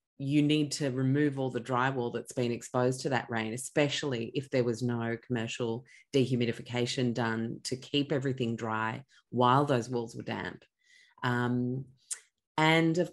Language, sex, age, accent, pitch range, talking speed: English, female, 30-49, Australian, 130-185 Hz, 150 wpm